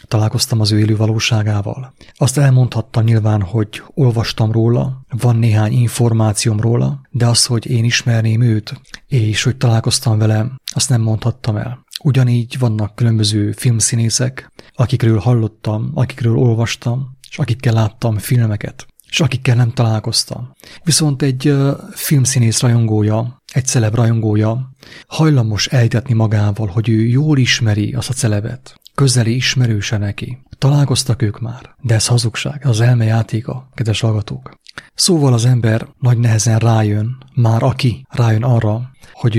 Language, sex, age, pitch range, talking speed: English, male, 30-49, 110-130 Hz, 135 wpm